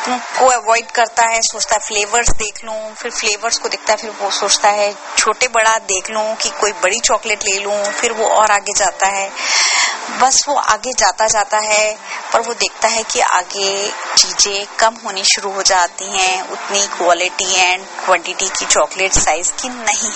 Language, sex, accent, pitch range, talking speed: Hindi, female, native, 205-250 Hz, 180 wpm